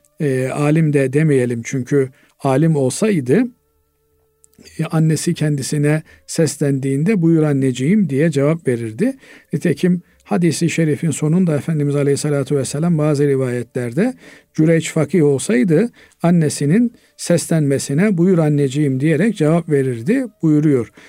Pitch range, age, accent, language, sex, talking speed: 140-185 Hz, 50-69, native, Turkish, male, 100 wpm